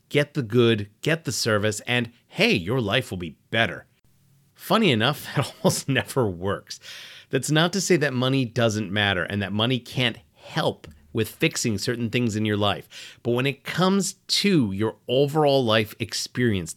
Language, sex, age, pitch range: English, male, 30-49, 110-150 Hz